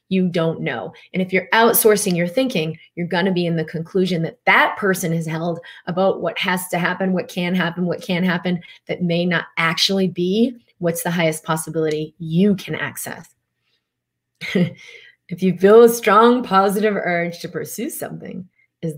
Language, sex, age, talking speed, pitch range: English, female, 30-49, 175 wpm, 165-215 Hz